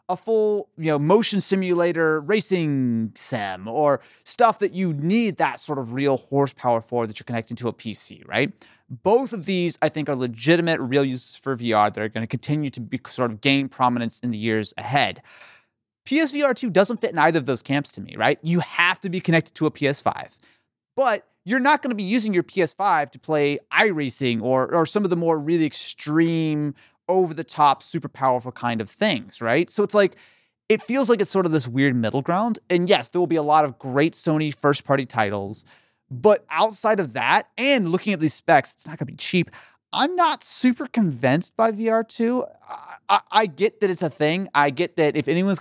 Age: 30-49